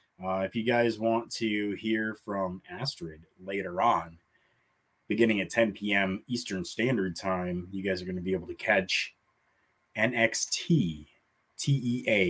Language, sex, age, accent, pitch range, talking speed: English, male, 30-49, American, 95-145 Hz, 140 wpm